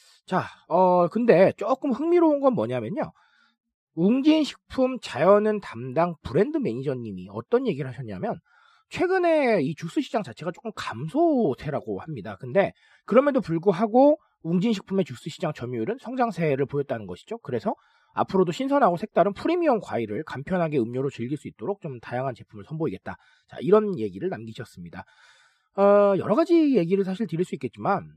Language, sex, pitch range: Korean, male, 155-235 Hz